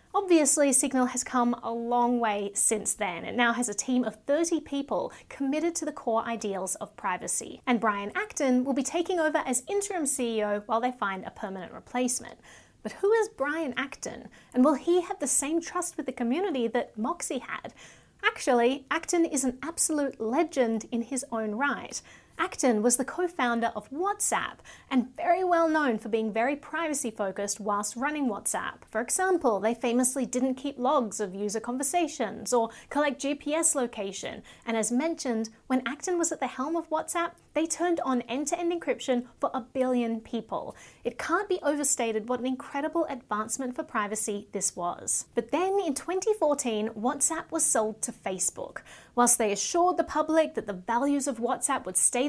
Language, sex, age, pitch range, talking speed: English, female, 30-49, 230-315 Hz, 175 wpm